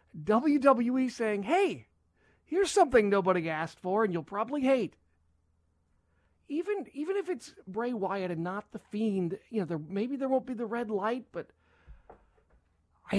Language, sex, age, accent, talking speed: English, male, 40-59, American, 155 wpm